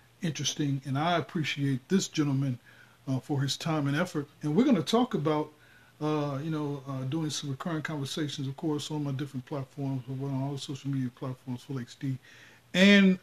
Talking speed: 185 wpm